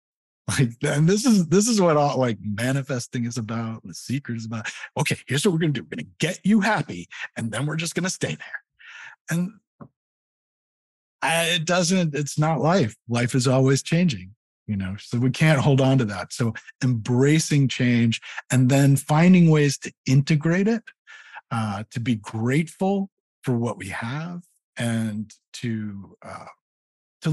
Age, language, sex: 50-69, English, male